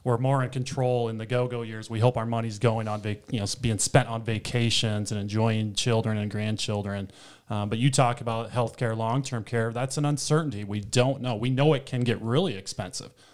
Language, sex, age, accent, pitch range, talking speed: English, male, 30-49, American, 110-135 Hz, 215 wpm